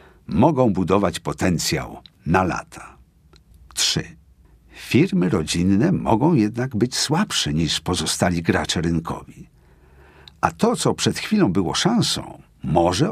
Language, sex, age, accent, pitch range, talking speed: Polish, male, 50-69, native, 85-115 Hz, 110 wpm